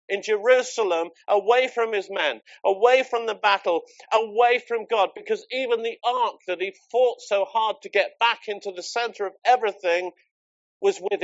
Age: 50-69